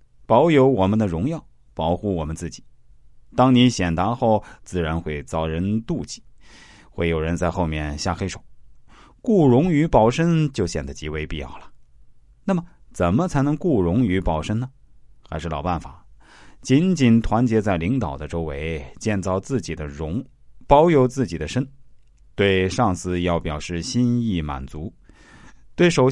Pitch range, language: 80-125 Hz, Chinese